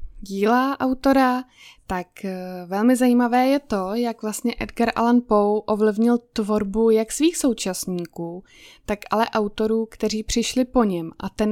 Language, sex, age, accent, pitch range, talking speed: Czech, female, 20-39, native, 200-245 Hz, 135 wpm